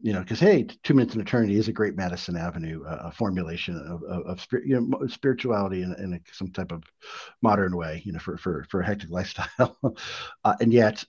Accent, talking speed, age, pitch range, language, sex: American, 215 wpm, 50-69, 85-110 Hz, English, male